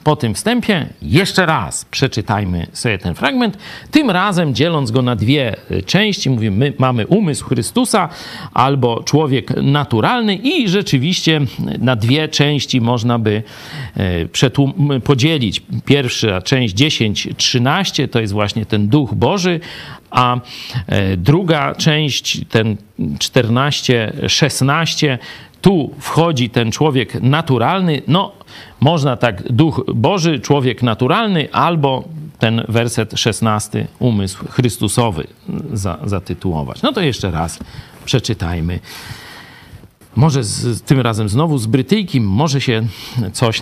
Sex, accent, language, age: male, native, Polish, 50-69